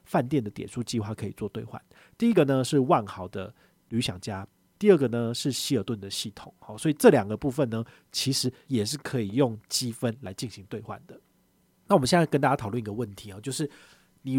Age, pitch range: 40-59, 105-140 Hz